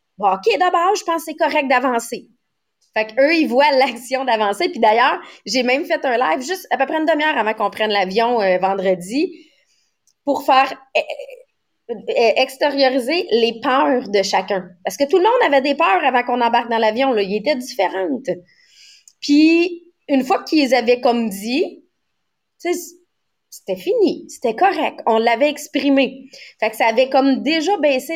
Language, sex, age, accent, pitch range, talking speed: English, female, 30-49, Canadian, 215-305 Hz, 175 wpm